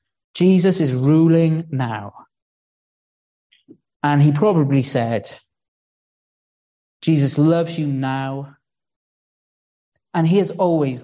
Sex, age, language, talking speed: male, 20-39, English, 85 wpm